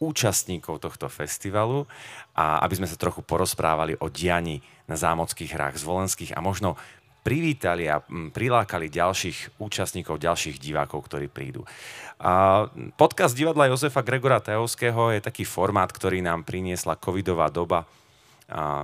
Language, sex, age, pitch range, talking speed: Slovak, male, 30-49, 80-105 Hz, 135 wpm